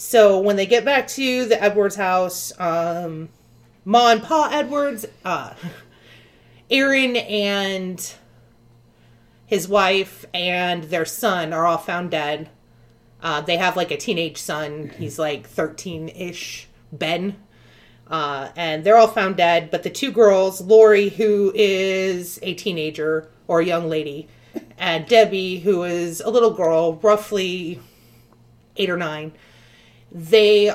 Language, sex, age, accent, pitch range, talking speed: English, female, 30-49, American, 155-205 Hz, 135 wpm